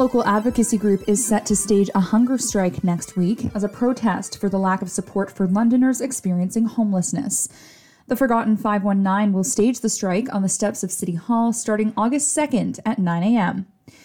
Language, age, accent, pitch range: English, 20-39, American, 195-235 Hz